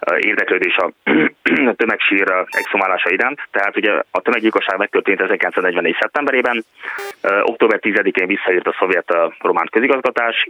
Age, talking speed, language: 20-39, 110 wpm, Hungarian